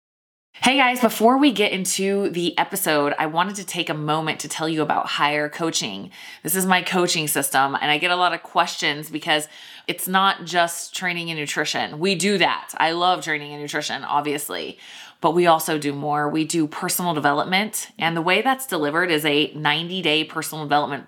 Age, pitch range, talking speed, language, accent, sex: 20-39, 150-175 Hz, 190 wpm, English, American, female